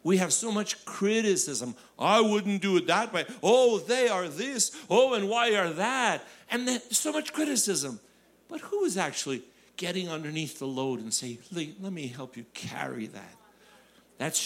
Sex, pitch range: male, 160-250 Hz